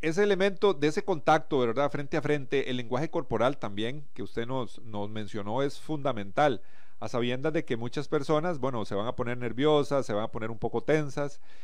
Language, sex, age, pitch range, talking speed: Spanish, male, 40-59, 120-160 Hz, 200 wpm